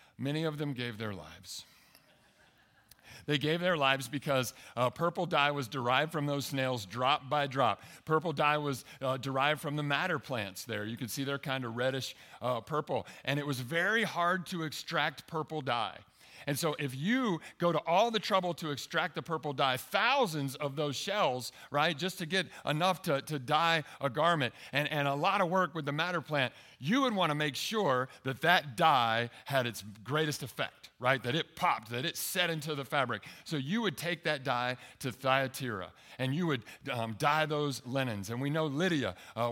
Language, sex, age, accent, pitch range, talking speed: English, male, 50-69, American, 125-165 Hz, 195 wpm